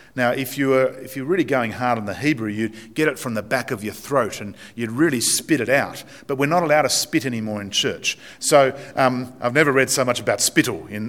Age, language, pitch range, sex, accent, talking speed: 50-69, English, 110-145 Hz, male, Australian, 240 wpm